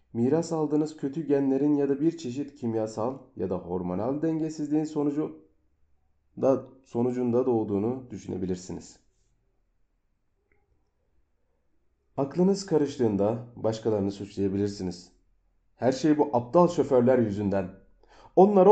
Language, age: Turkish, 40-59